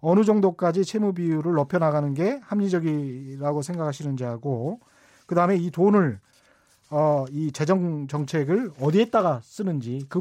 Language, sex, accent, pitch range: Korean, male, native, 155-210 Hz